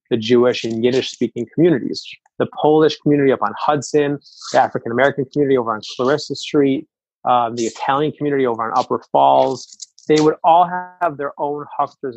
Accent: American